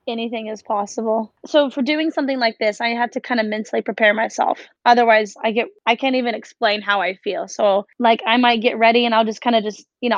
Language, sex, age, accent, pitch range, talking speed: English, female, 20-39, American, 225-260 Hz, 240 wpm